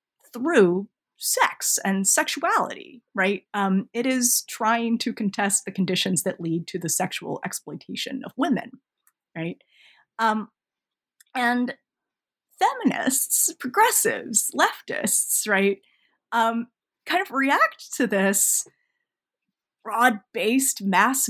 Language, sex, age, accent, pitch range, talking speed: English, female, 30-49, American, 205-280 Hz, 100 wpm